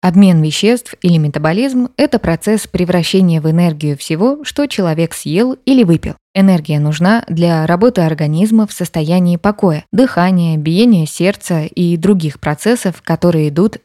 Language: Russian